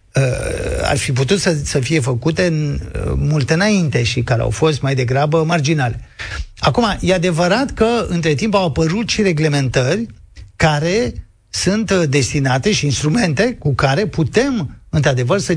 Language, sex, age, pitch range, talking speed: Romanian, male, 50-69, 130-185 Hz, 145 wpm